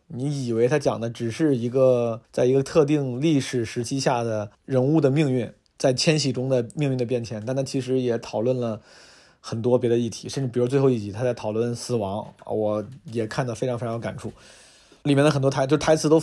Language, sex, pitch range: Chinese, male, 125-160 Hz